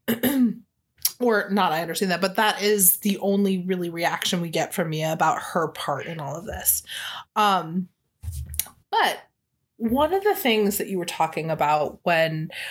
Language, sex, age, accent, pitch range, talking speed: English, female, 20-39, American, 175-225 Hz, 165 wpm